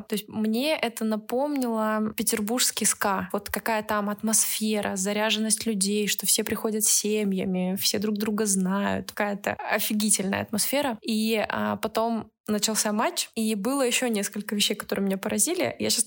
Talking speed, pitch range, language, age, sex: 145 wpm, 205-230 Hz, Russian, 20-39, female